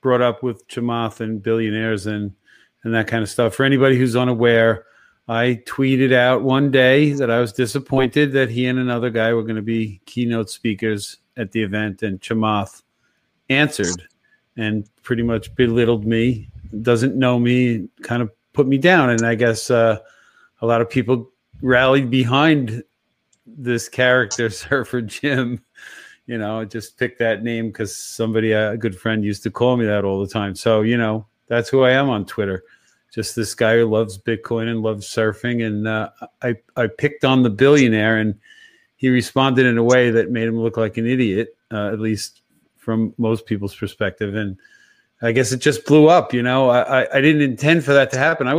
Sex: male